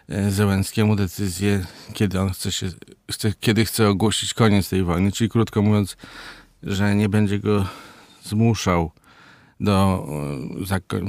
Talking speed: 125 wpm